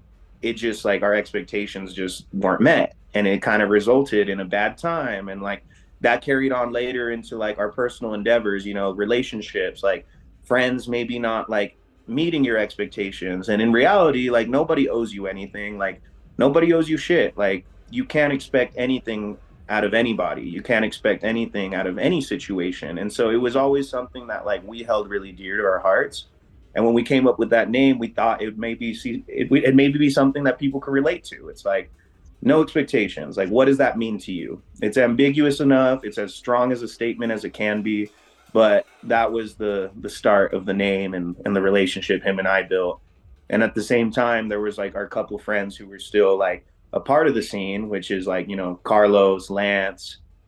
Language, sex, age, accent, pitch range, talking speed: English, male, 30-49, American, 100-120 Hz, 205 wpm